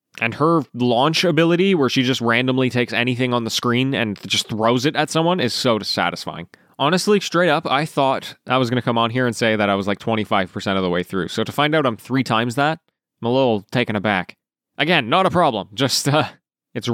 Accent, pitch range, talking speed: American, 110-145 Hz, 235 wpm